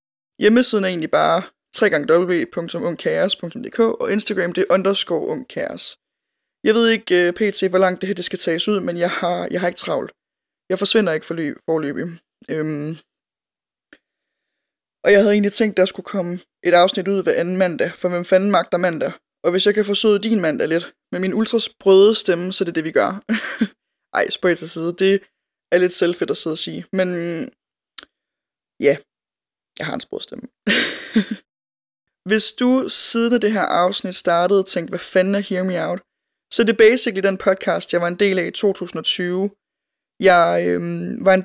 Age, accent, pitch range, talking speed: 20-39, native, 175-205 Hz, 180 wpm